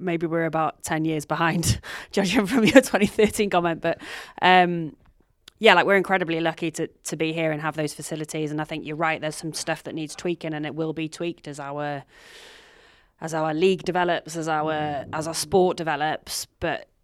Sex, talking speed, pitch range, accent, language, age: female, 195 wpm, 155-180 Hz, British, English, 20-39